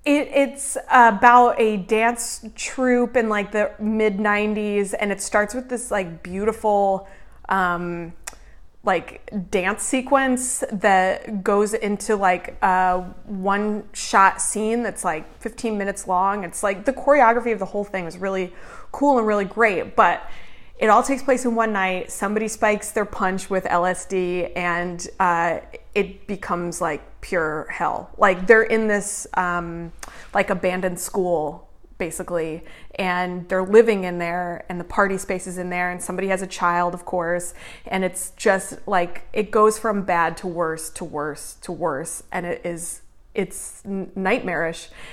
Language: English